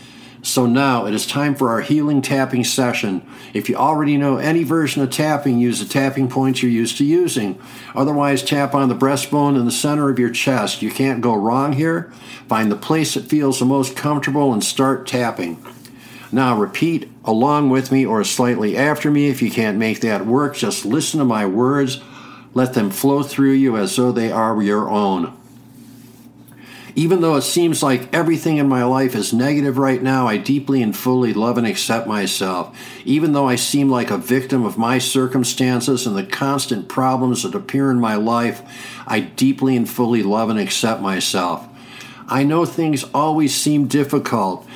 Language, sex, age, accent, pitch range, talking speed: English, male, 50-69, American, 125-145 Hz, 185 wpm